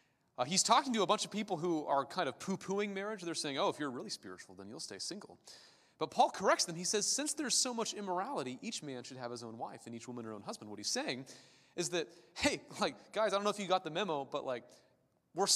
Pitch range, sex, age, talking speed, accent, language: 135-200 Hz, male, 30-49, 260 wpm, American, English